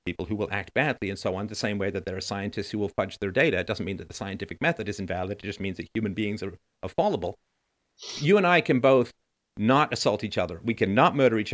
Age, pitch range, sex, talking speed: 50-69, 105-125 Hz, male, 260 wpm